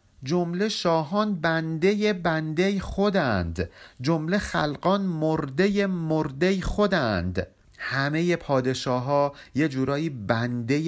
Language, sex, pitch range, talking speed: Persian, male, 130-185 Hz, 90 wpm